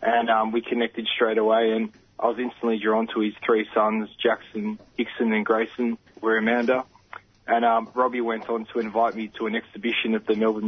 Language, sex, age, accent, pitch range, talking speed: English, male, 20-39, Australian, 110-120 Hz, 195 wpm